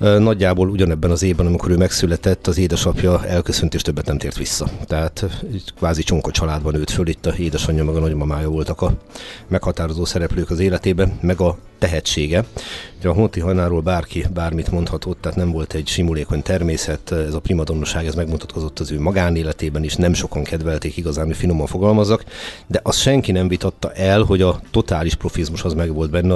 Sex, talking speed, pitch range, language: male, 175 wpm, 80-95 Hz, Hungarian